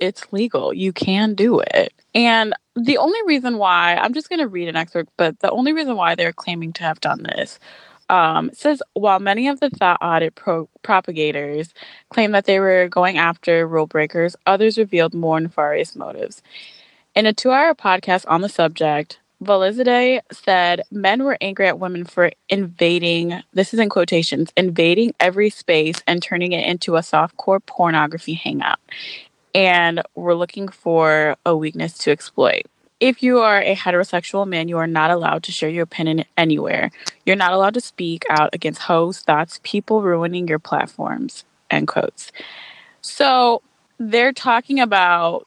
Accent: American